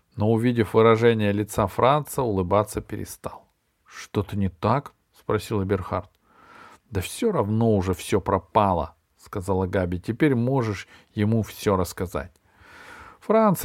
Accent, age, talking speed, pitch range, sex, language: native, 40-59, 125 wpm, 100-150 Hz, male, Russian